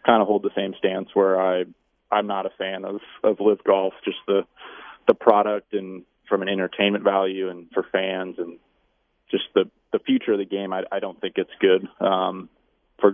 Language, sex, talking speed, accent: English, male, 200 wpm, American